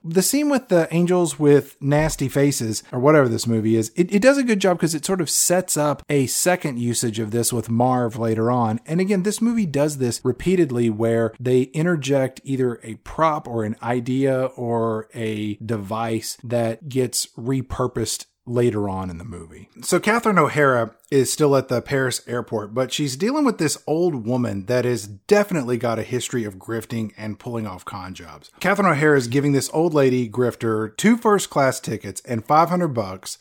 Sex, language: male, English